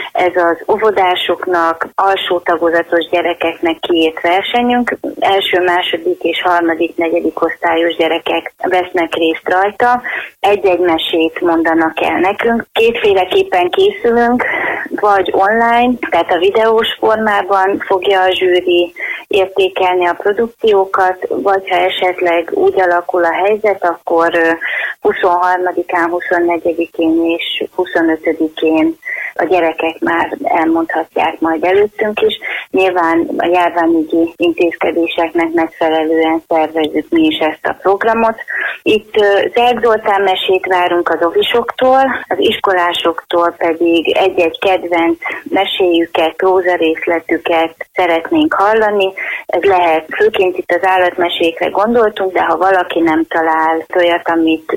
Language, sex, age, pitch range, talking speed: Hungarian, female, 30-49, 165-195 Hz, 105 wpm